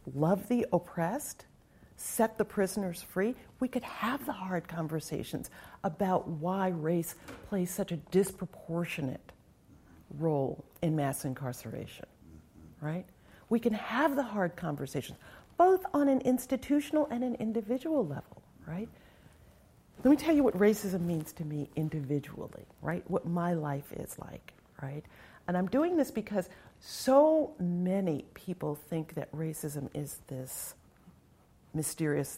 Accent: American